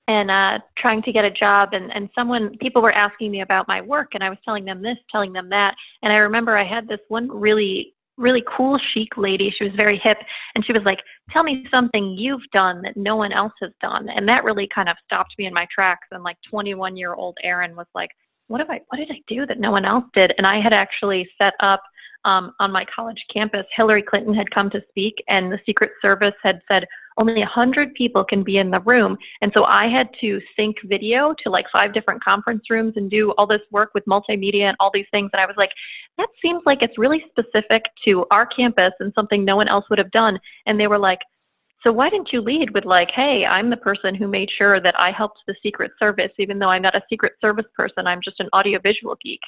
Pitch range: 195-230 Hz